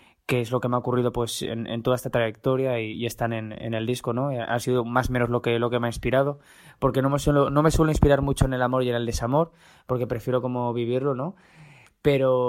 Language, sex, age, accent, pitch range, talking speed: Spanish, male, 20-39, Spanish, 120-135 Hz, 265 wpm